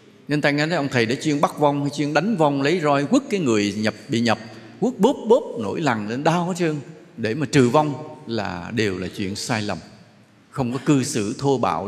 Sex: male